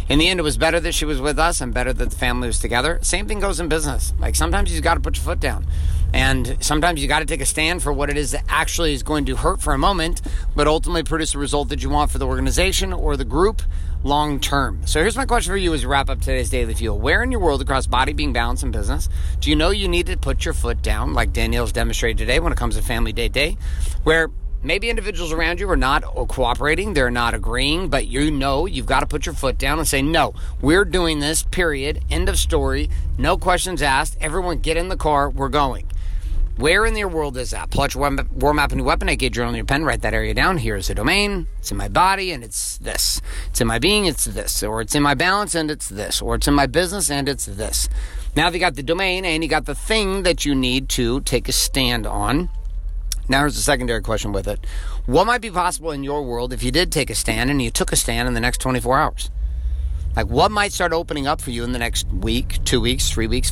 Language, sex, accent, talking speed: English, male, American, 255 wpm